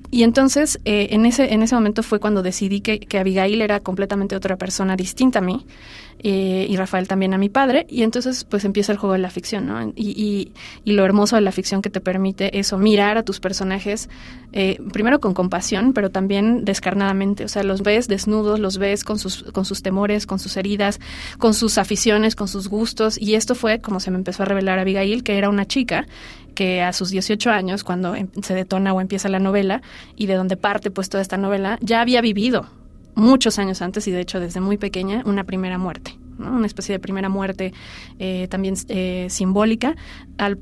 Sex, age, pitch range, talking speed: female, 30-49, 190-215 Hz, 210 wpm